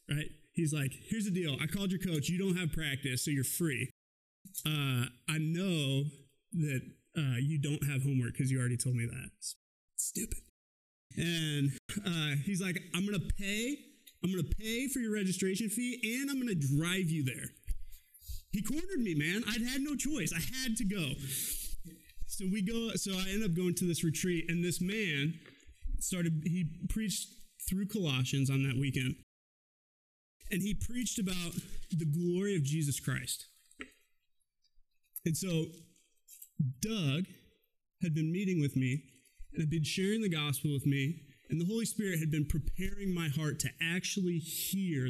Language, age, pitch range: English, 30-49, 140-185 Hz